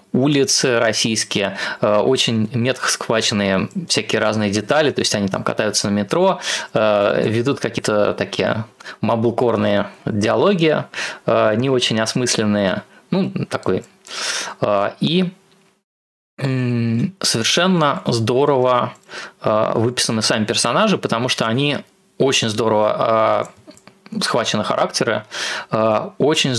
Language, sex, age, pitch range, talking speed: Russian, male, 20-39, 110-130 Hz, 90 wpm